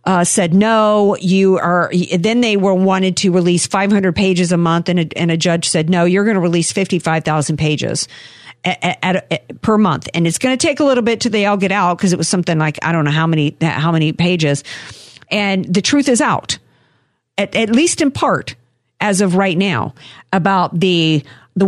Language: English